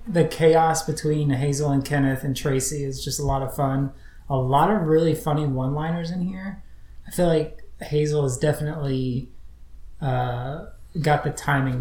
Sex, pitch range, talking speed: male, 130-155 Hz, 165 wpm